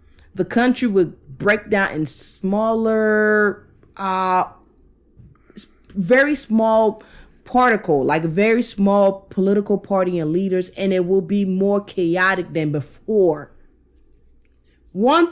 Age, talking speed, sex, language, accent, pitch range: 30-49, 105 wpm, female, English, American, 150-210 Hz